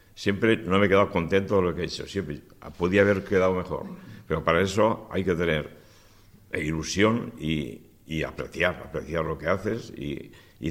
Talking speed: 180 wpm